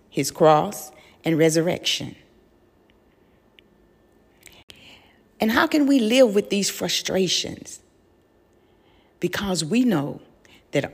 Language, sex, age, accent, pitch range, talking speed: English, female, 50-69, American, 150-210 Hz, 90 wpm